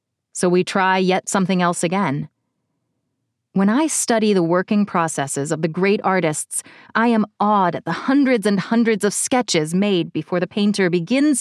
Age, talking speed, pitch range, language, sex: 30-49, 170 wpm, 170-220 Hz, English, female